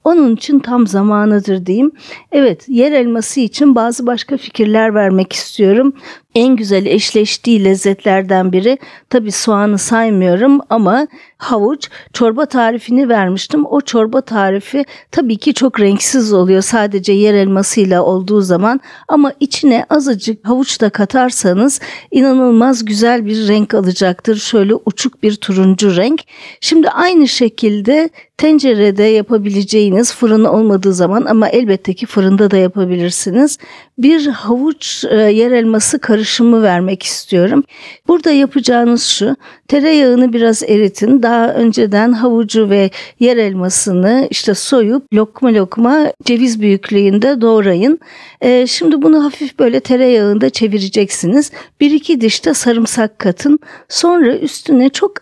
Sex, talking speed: female, 120 wpm